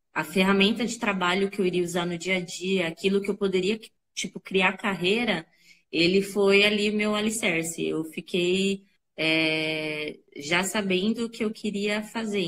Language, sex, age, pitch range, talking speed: Portuguese, female, 20-39, 170-215 Hz, 165 wpm